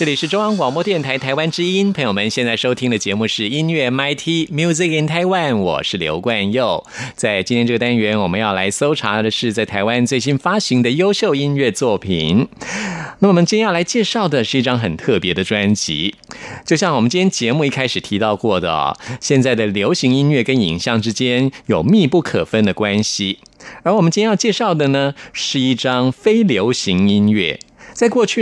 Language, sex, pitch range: Chinese, male, 110-175 Hz